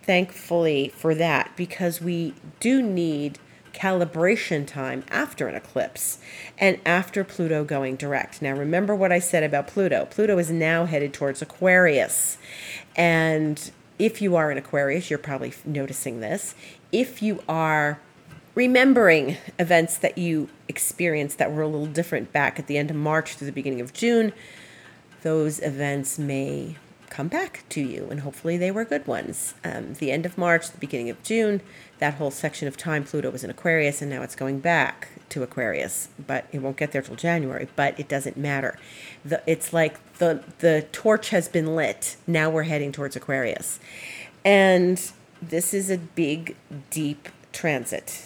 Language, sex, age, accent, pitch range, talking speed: English, female, 40-59, American, 145-180 Hz, 165 wpm